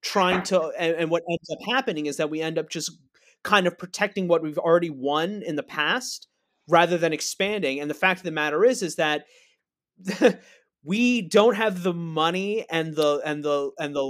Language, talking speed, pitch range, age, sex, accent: English, 200 wpm, 145-180 Hz, 30-49, male, American